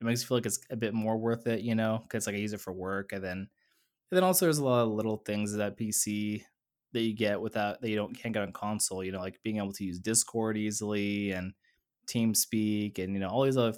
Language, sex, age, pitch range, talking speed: English, male, 20-39, 100-125 Hz, 275 wpm